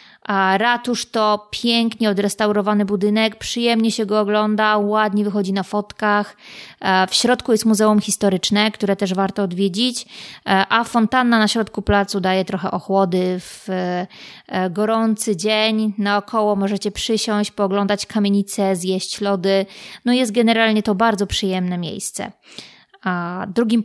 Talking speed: 125 wpm